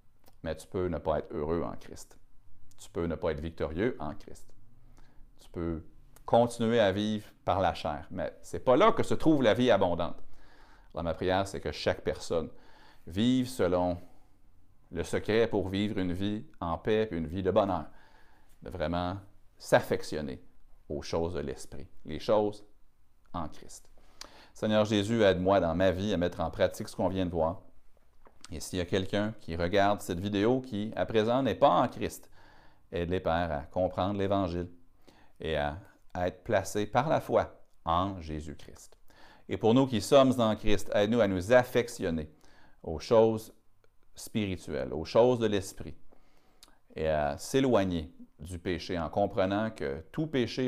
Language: French